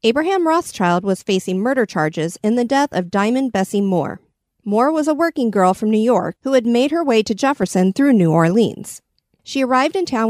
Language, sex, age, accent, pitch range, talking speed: English, female, 40-59, American, 190-265 Hz, 205 wpm